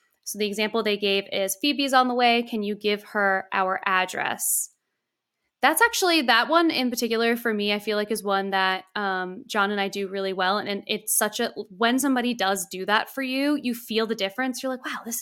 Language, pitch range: English, 205-255 Hz